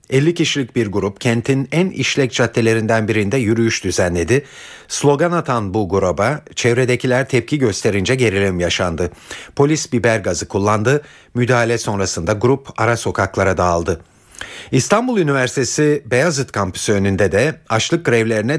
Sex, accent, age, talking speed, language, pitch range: male, native, 50-69, 125 wpm, Turkish, 105-135 Hz